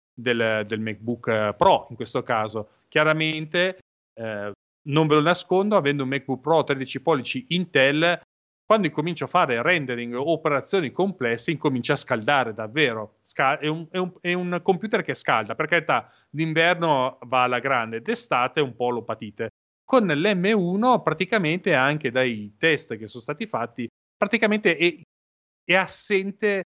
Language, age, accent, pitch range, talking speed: Italian, 30-49, native, 125-175 Hz, 135 wpm